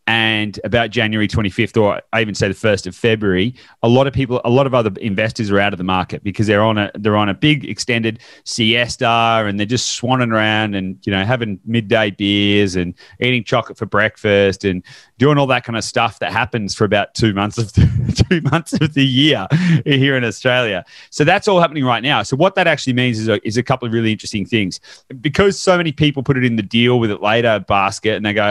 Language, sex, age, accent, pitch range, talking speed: English, male, 30-49, Australian, 100-125 Hz, 230 wpm